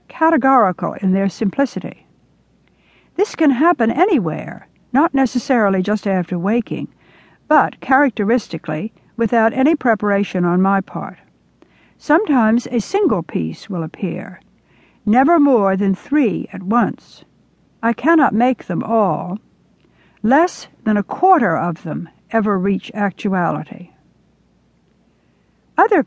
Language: English